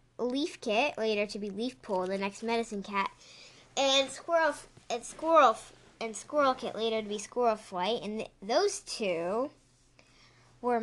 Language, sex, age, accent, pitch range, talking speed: English, female, 10-29, American, 185-240 Hz, 155 wpm